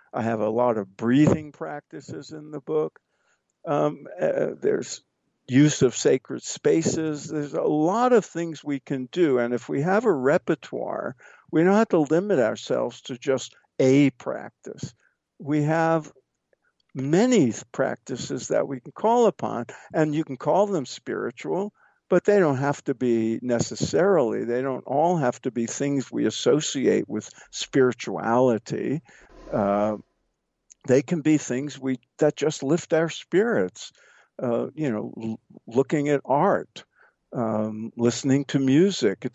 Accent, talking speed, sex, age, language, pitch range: American, 145 wpm, male, 50-69, English, 125-160 Hz